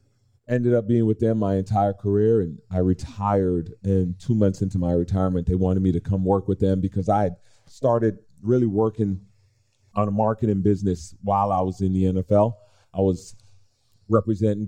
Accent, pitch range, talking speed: American, 95-110 Hz, 180 wpm